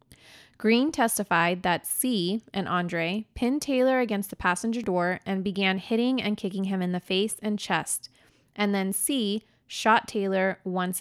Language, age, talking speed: English, 20-39, 160 wpm